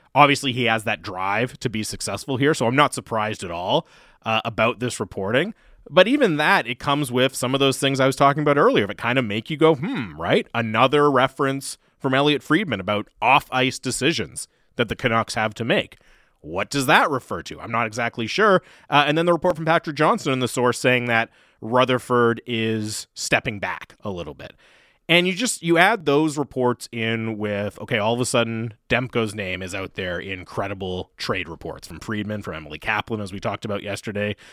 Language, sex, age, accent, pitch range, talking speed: English, male, 30-49, American, 110-140 Hz, 205 wpm